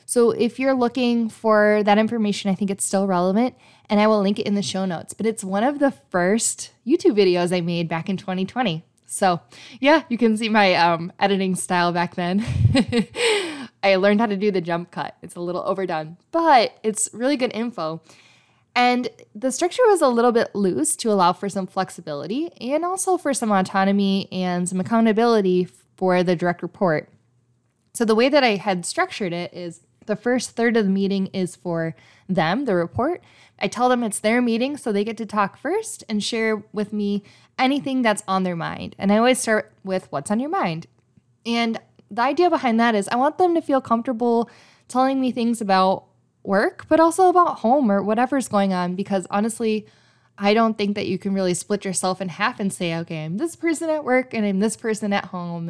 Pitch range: 180-240 Hz